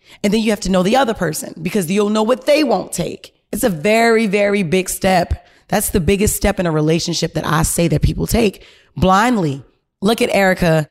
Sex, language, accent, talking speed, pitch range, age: female, English, American, 215 wpm, 165-225 Hz, 30-49